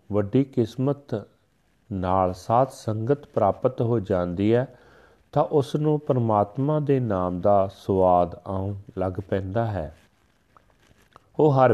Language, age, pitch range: Punjabi, 40-59, 100-130 Hz